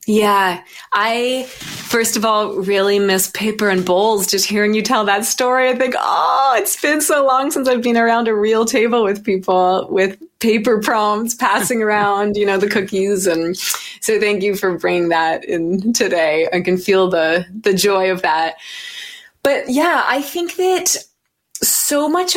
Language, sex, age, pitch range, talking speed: English, female, 20-39, 190-250 Hz, 175 wpm